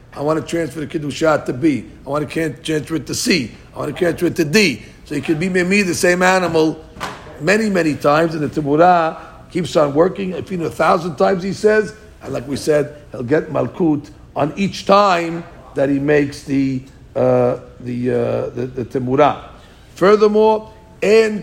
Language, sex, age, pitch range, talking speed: English, male, 50-69, 140-185 Hz, 200 wpm